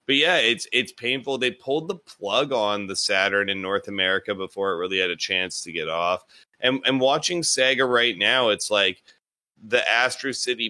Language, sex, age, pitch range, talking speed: English, male, 30-49, 90-110 Hz, 195 wpm